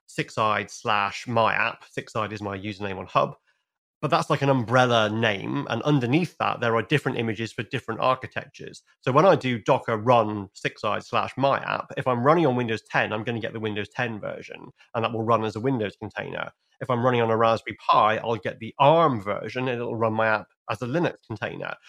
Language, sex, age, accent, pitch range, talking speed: English, male, 30-49, British, 110-135 Hz, 215 wpm